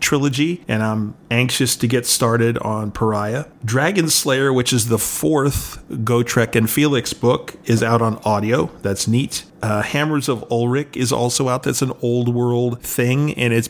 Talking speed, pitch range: 170 wpm, 115-135 Hz